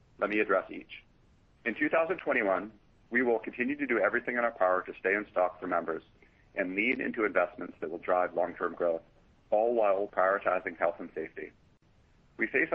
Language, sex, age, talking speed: English, male, 40-59, 180 wpm